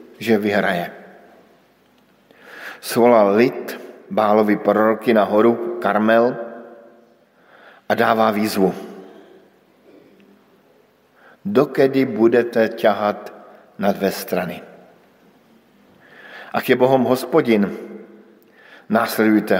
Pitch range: 110-125 Hz